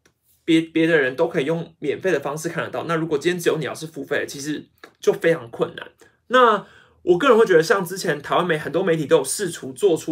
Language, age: Chinese, 30-49